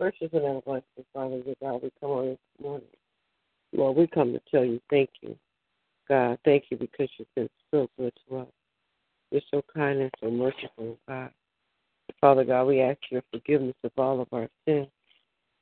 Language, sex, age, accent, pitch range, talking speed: English, female, 60-79, American, 130-145 Hz, 185 wpm